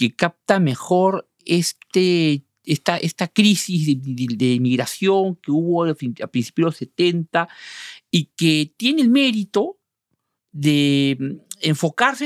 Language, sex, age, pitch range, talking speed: Spanish, male, 50-69, 145-205 Hz, 120 wpm